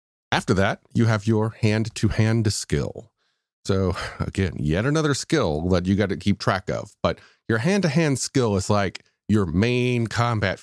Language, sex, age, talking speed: English, male, 40-59, 160 wpm